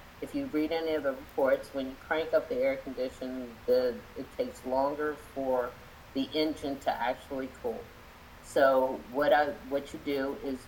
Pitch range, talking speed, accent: 125-155 Hz, 175 wpm, American